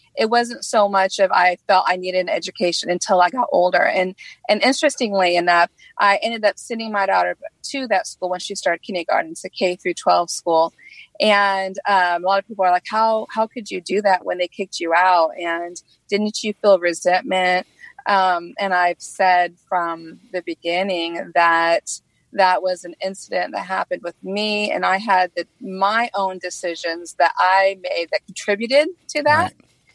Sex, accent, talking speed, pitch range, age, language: female, American, 175 wpm, 175-220 Hz, 30-49, English